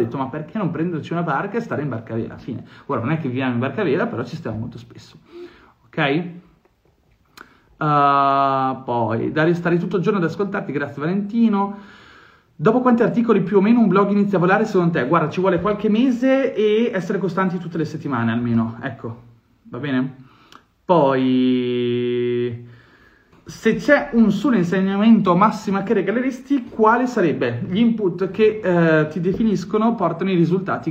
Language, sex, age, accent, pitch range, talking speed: Italian, male, 30-49, native, 140-200 Hz, 170 wpm